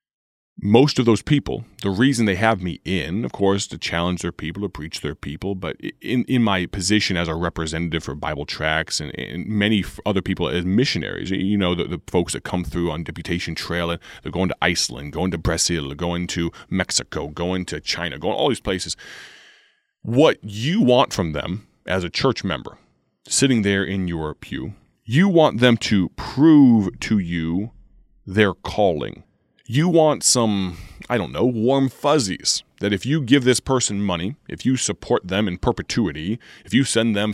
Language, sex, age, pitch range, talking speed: English, male, 30-49, 90-125 Hz, 185 wpm